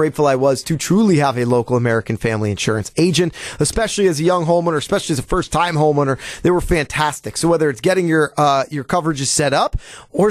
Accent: American